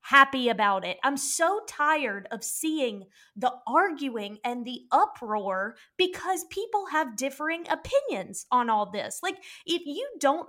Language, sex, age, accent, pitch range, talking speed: English, female, 20-39, American, 235-315 Hz, 145 wpm